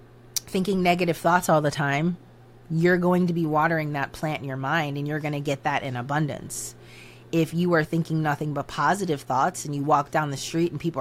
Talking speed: 220 wpm